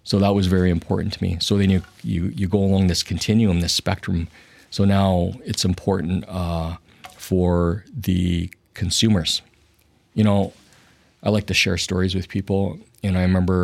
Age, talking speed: 40-59, 165 wpm